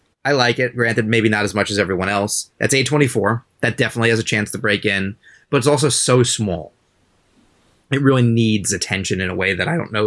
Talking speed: 220 wpm